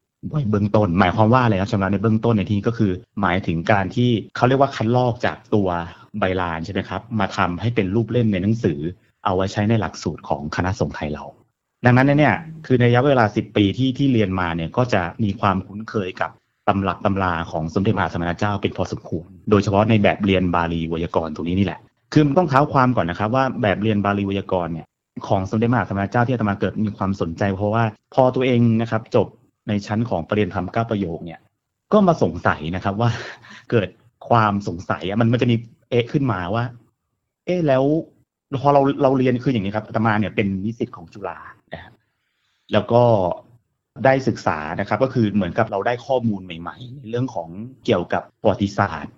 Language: Thai